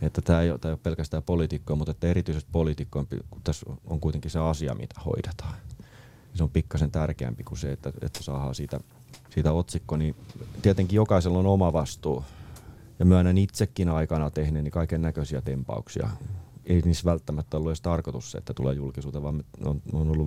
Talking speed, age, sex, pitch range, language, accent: 165 wpm, 30-49, male, 75-90 Hz, Finnish, native